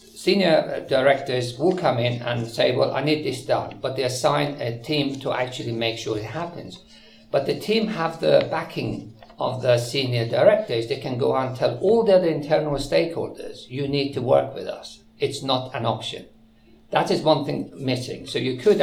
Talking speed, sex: 195 wpm, male